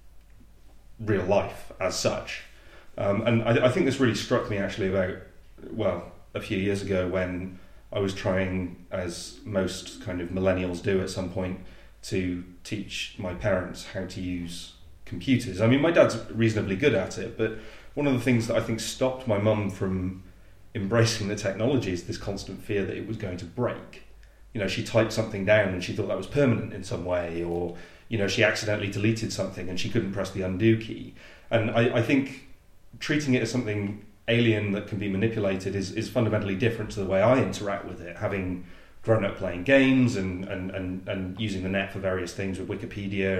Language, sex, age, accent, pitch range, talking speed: English, male, 30-49, British, 95-110 Hz, 200 wpm